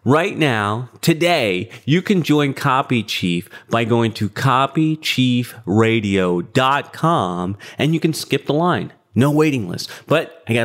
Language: English